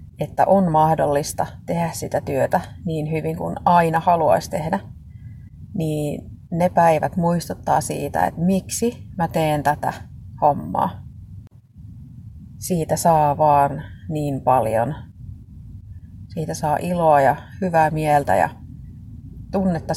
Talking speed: 110 wpm